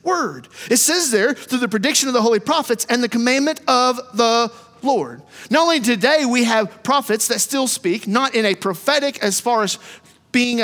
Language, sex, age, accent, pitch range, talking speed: English, male, 40-59, American, 205-260 Hz, 190 wpm